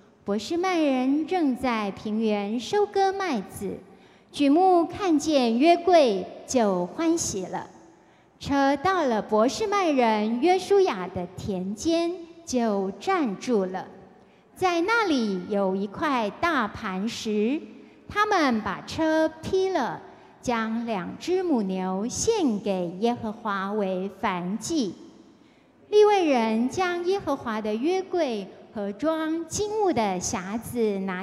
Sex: female